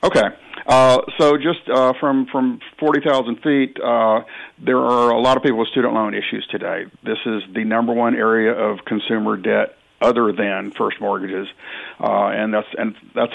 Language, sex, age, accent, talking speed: English, male, 50-69, American, 180 wpm